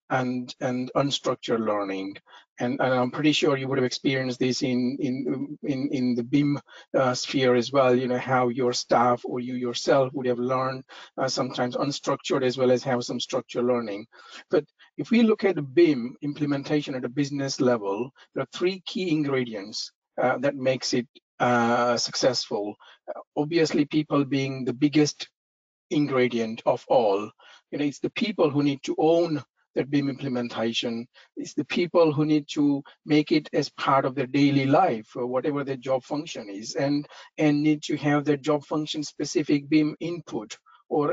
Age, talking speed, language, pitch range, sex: 50-69, 175 wpm, English, 125-150 Hz, male